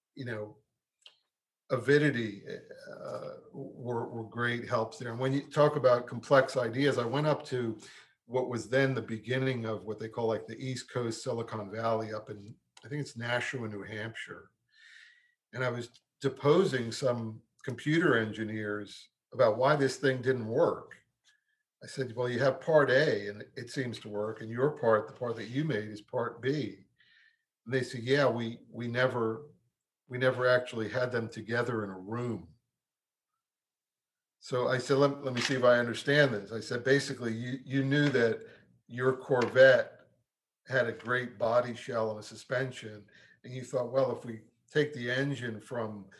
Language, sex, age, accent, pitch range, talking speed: English, male, 50-69, American, 115-135 Hz, 175 wpm